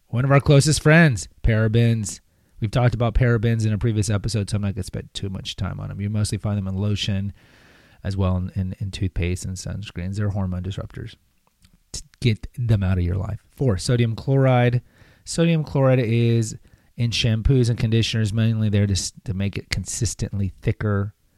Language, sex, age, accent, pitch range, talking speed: English, male, 30-49, American, 100-125 Hz, 190 wpm